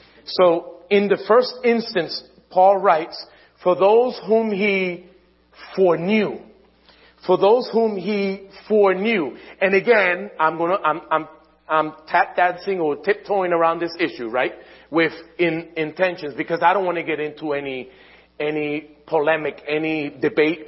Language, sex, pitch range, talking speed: English, male, 165-210 Hz, 135 wpm